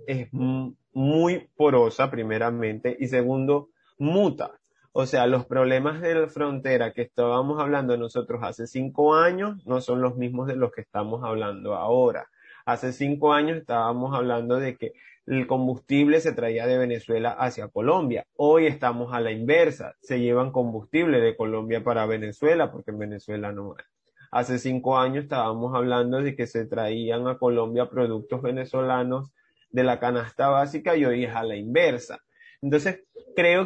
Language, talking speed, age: Spanish, 155 wpm, 30-49